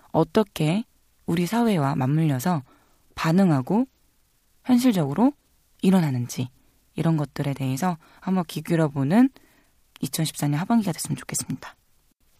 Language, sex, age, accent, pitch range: Korean, female, 20-39, native, 145-215 Hz